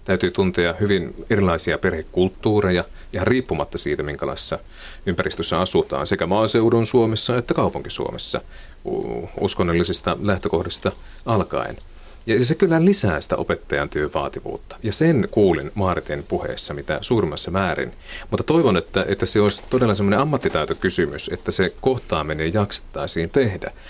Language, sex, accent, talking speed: Finnish, male, native, 120 wpm